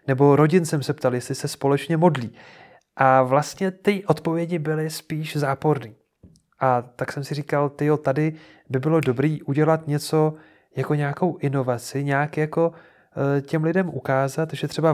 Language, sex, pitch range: Czech, male, 130-155 Hz